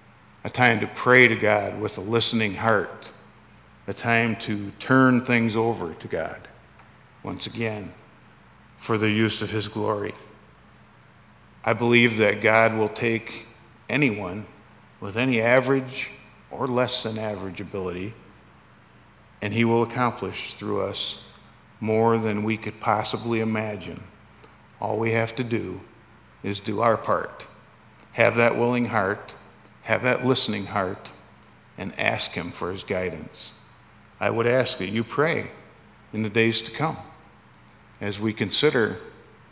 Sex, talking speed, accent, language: male, 135 wpm, American, English